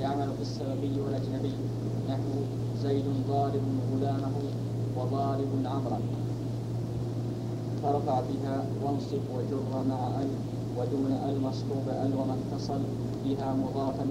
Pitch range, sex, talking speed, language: 125-140 Hz, male, 100 wpm, Arabic